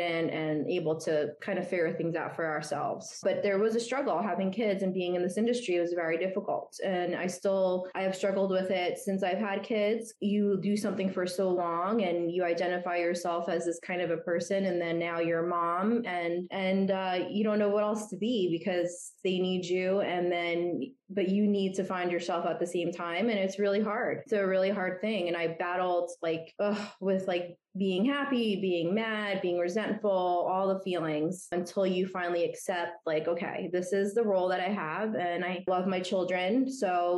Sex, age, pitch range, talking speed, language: female, 20-39, 175-205 Hz, 210 wpm, English